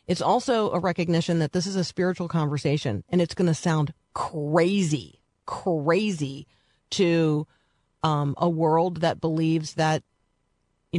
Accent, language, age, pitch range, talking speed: American, English, 40-59, 155-190 Hz, 135 wpm